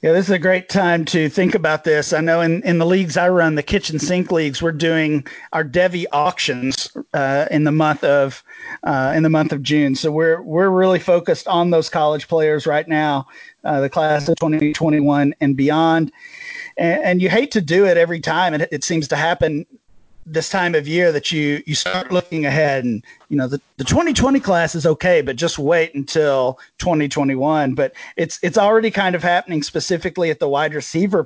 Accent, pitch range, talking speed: American, 150-175 Hz, 205 wpm